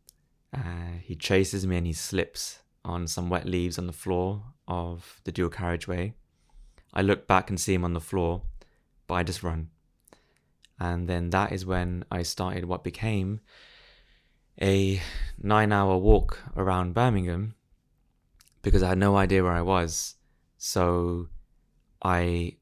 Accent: British